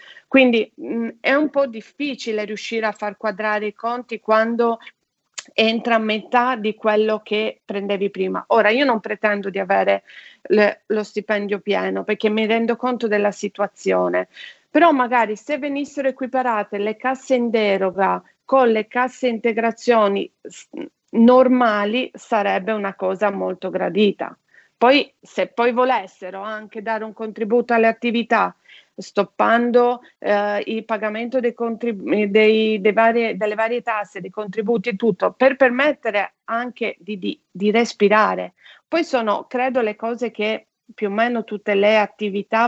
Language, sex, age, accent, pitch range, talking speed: Italian, female, 40-59, native, 205-235 Hz, 140 wpm